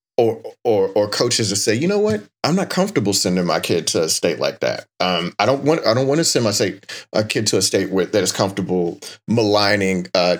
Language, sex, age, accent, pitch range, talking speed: English, male, 30-49, American, 95-120 Hz, 240 wpm